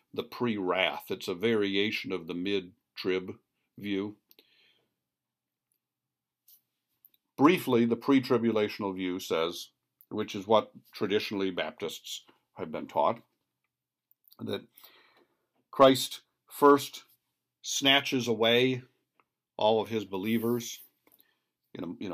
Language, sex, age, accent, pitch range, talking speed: English, male, 50-69, American, 95-120 Hz, 95 wpm